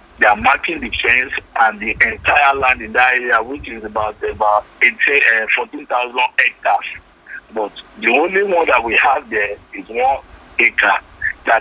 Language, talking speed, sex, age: English, 160 wpm, male, 50-69